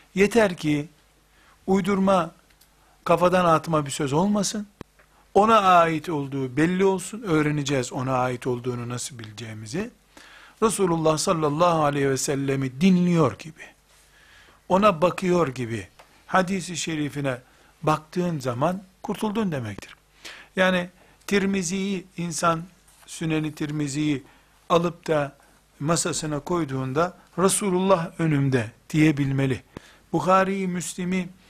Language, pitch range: Turkish, 145-185 Hz